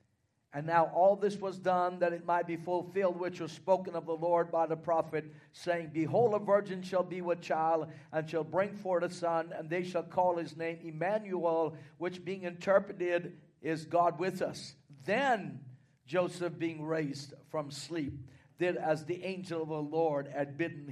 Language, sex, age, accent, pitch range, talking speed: English, male, 50-69, American, 125-170 Hz, 180 wpm